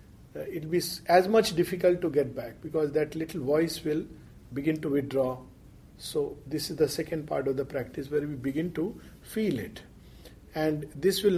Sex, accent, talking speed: male, Indian, 185 wpm